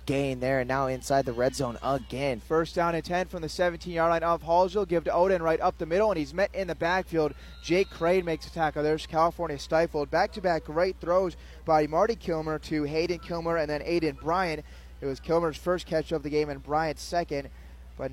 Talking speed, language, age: 215 wpm, English, 20-39